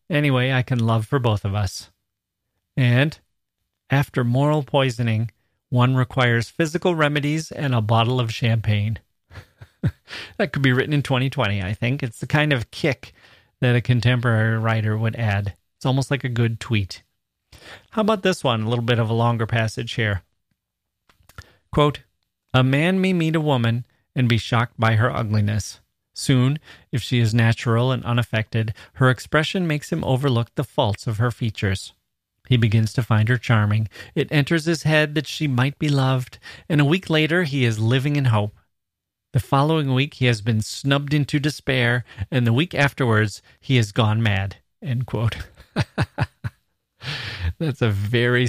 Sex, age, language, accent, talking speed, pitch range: male, 40-59, English, American, 165 wpm, 110-140 Hz